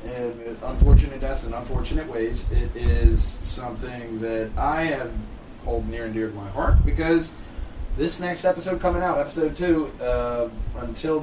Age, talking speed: 30-49, 155 wpm